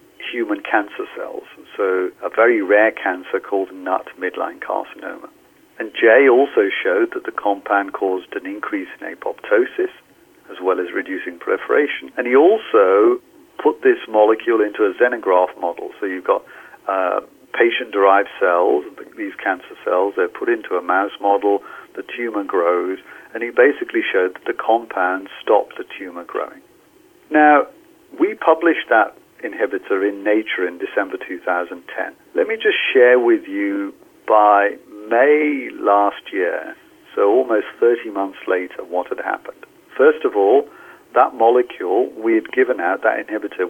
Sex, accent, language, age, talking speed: male, British, English, 50-69, 145 wpm